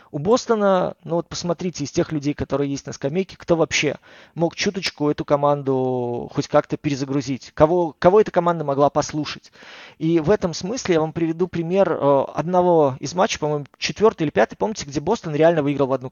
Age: 20-39